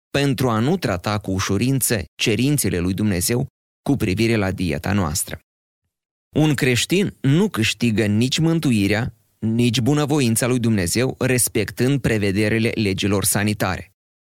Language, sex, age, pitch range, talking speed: Romanian, male, 30-49, 95-130 Hz, 120 wpm